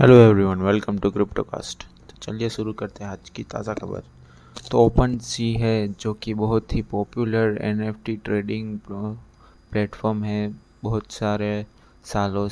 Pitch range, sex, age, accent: 105-115 Hz, male, 20-39, native